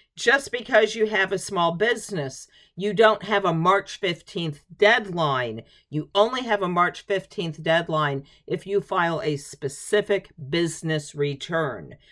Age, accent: 50-69, American